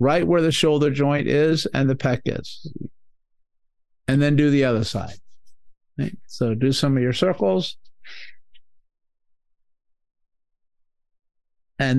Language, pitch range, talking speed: English, 95-145 Hz, 115 wpm